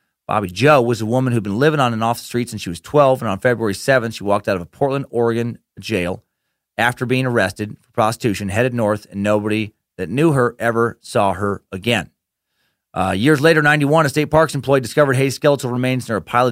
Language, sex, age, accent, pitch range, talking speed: English, male, 30-49, American, 105-145 Hz, 220 wpm